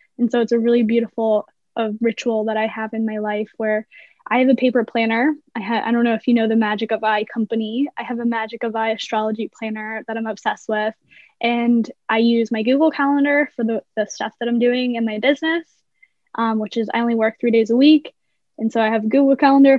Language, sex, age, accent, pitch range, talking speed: English, female, 10-29, American, 225-250 Hz, 235 wpm